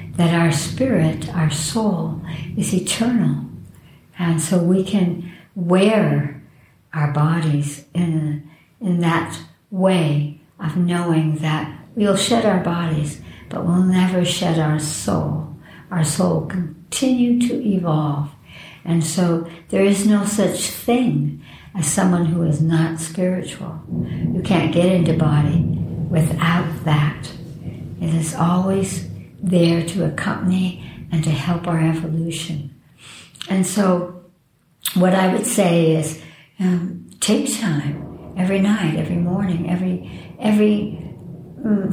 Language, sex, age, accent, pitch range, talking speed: English, male, 60-79, American, 155-185 Hz, 125 wpm